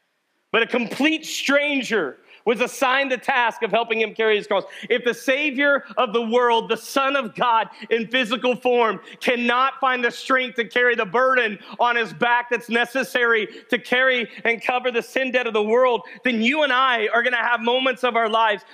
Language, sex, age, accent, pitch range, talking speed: English, male, 40-59, American, 235-270 Hz, 195 wpm